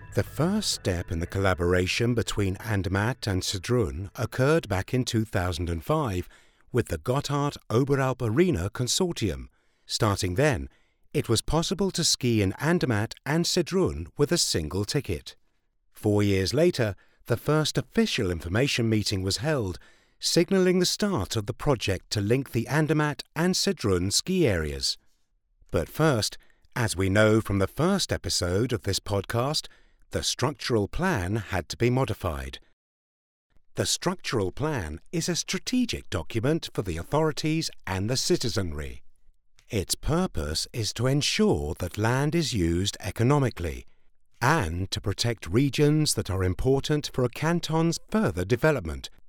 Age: 50-69